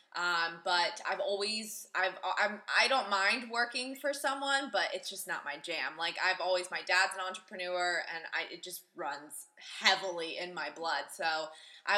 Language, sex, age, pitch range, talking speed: English, female, 20-39, 185-245 Hz, 180 wpm